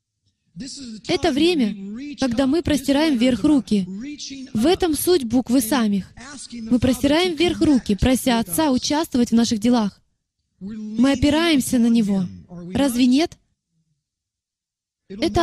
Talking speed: 115 wpm